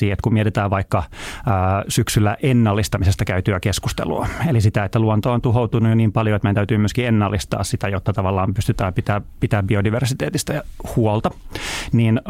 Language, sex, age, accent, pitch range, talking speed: Finnish, male, 30-49, native, 100-120 Hz, 160 wpm